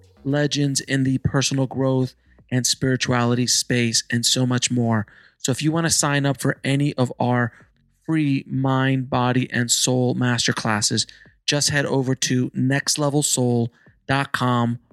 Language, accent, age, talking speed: English, American, 30-49, 140 wpm